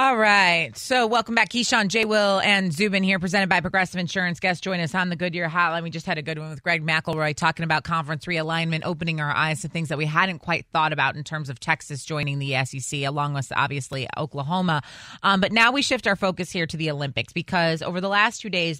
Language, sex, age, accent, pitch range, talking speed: English, female, 20-39, American, 155-185 Hz, 235 wpm